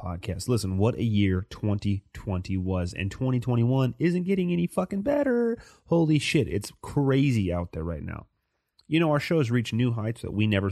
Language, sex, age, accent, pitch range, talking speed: English, male, 30-49, American, 100-125 Hz, 185 wpm